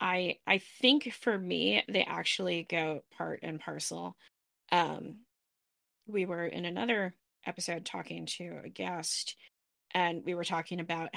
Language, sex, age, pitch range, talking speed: English, female, 20-39, 165-195 Hz, 140 wpm